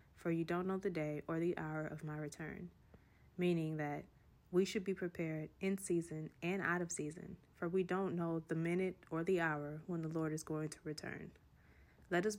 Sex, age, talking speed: female, 20-39, 205 wpm